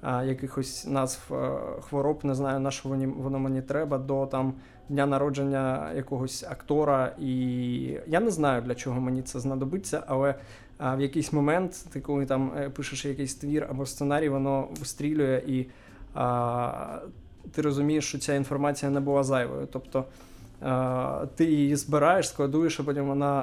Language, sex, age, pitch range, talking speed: Ukrainian, male, 20-39, 130-145 Hz, 155 wpm